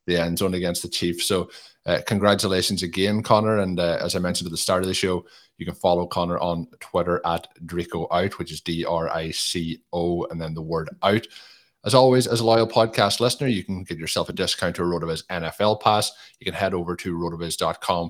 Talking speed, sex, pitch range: 210 wpm, male, 85-105 Hz